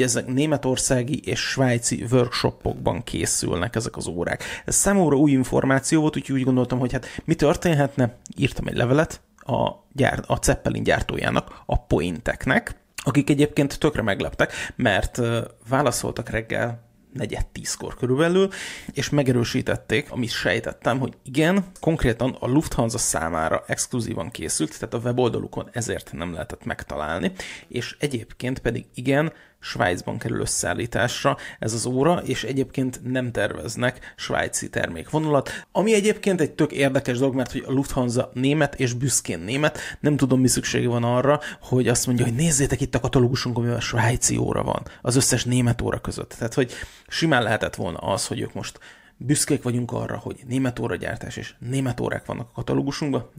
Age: 30-49